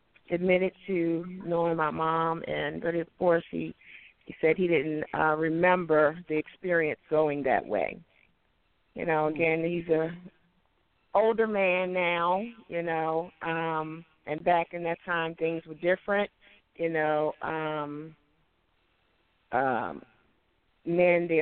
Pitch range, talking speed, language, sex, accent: 155-180 Hz, 130 wpm, English, female, American